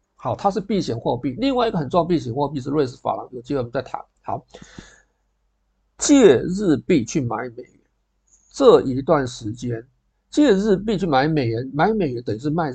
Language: Chinese